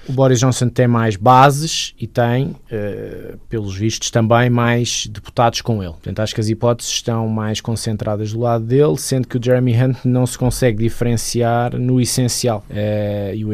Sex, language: male, Portuguese